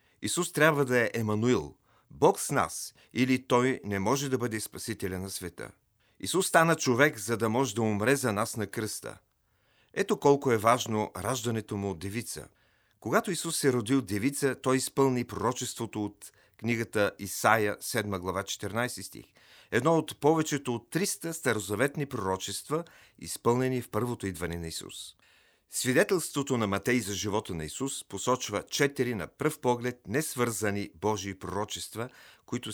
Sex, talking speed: male, 150 wpm